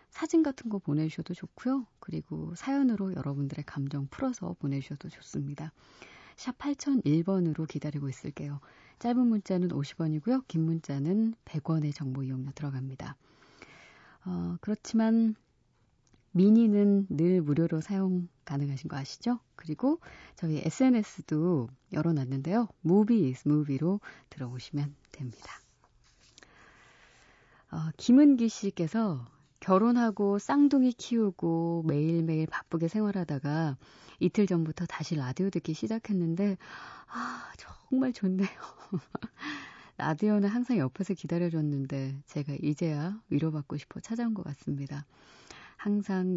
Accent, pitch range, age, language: native, 145-205 Hz, 40-59, Korean